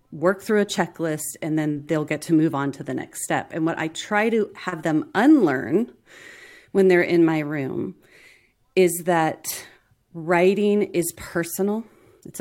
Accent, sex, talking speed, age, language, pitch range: American, female, 165 wpm, 30-49, English, 155-200 Hz